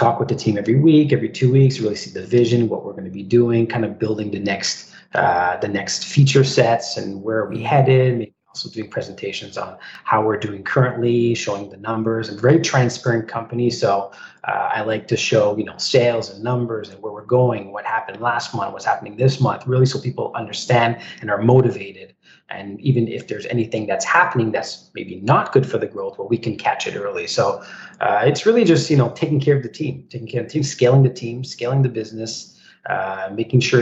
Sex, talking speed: male, 225 wpm